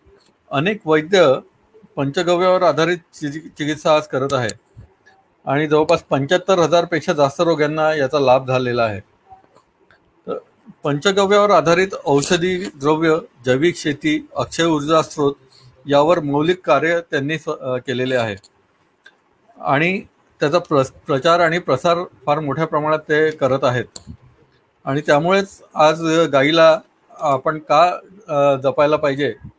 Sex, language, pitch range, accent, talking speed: male, Marathi, 140-170 Hz, native, 75 wpm